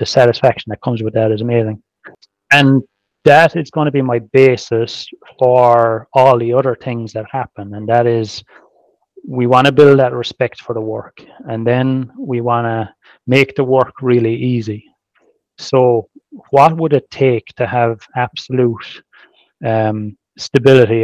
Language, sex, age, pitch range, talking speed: English, male, 30-49, 115-135 Hz, 155 wpm